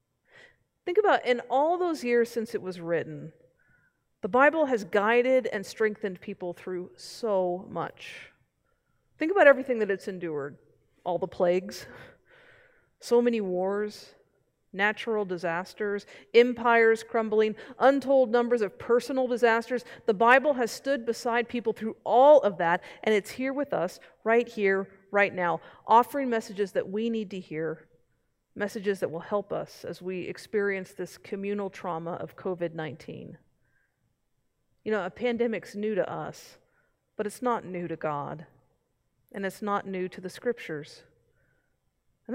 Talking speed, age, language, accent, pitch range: 145 wpm, 40-59, English, American, 180-240 Hz